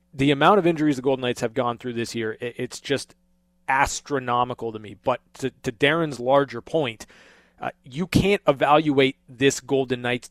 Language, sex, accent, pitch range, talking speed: English, male, American, 125-140 Hz, 175 wpm